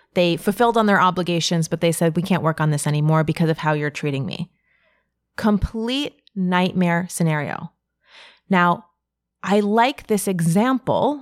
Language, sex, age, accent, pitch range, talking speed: English, female, 30-49, American, 170-220 Hz, 150 wpm